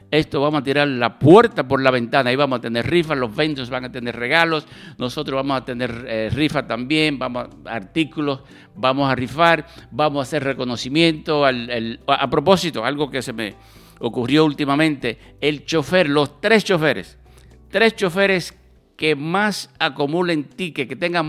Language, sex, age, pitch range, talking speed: English, male, 60-79, 125-170 Hz, 170 wpm